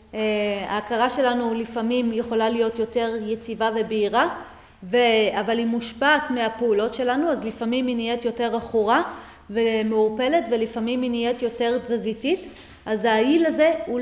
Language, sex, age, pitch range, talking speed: Hebrew, female, 30-49, 220-255 Hz, 135 wpm